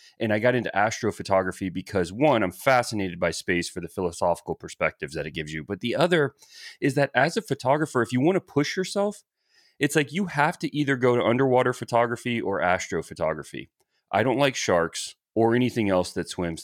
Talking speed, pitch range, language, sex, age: 195 wpm, 115-160 Hz, English, male, 30-49